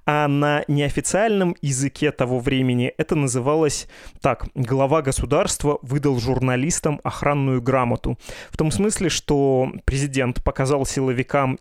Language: Russian